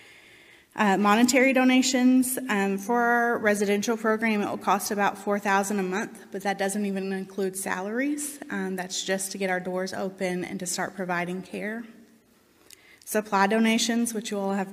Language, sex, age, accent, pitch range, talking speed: English, female, 20-39, American, 190-230 Hz, 165 wpm